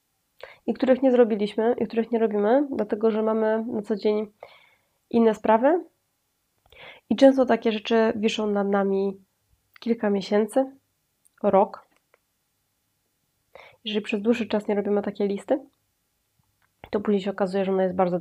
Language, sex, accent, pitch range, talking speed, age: Polish, female, native, 195-220 Hz, 140 wpm, 20-39